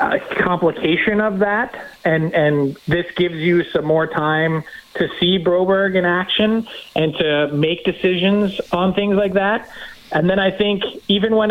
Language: English